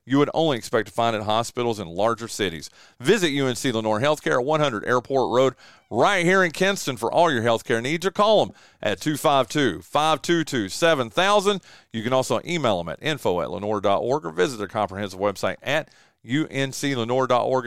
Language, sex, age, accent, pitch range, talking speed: English, male, 40-59, American, 115-155 Hz, 165 wpm